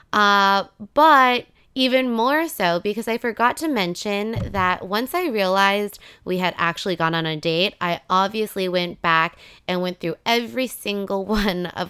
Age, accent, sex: 20-39, American, female